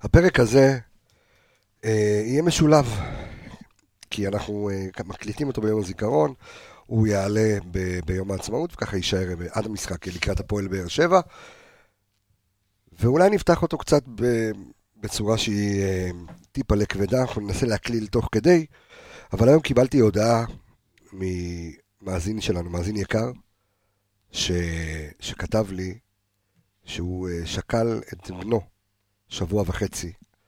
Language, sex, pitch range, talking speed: Hebrew, male, 95-115 Hz, 115 wpm